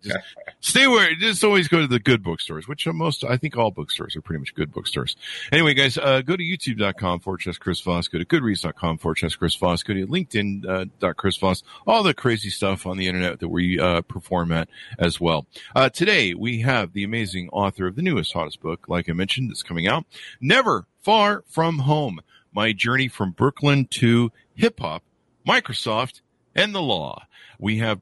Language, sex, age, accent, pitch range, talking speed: English, male, 50-69, American, 90-135 Hz, 200 wpm